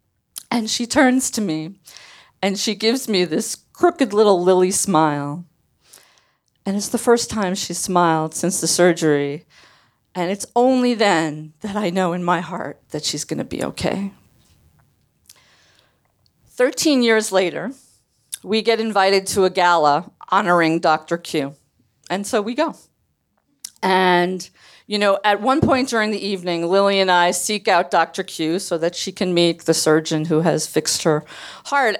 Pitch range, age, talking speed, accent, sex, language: 165-220 Hz, 40-59, 160 wpm, American, female, English